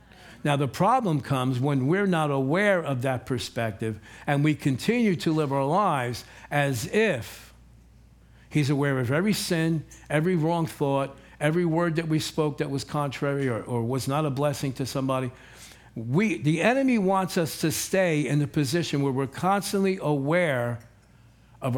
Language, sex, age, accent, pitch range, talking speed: English, male, 60-79, American, 130-180 Hz, 160 wpm